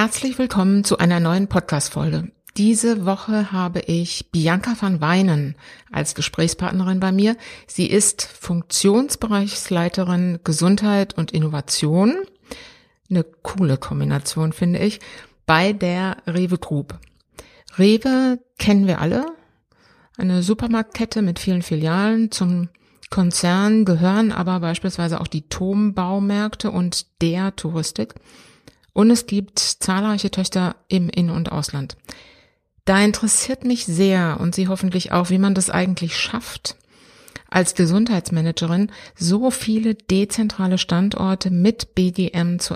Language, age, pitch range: German, 60-79, 175-205 Hz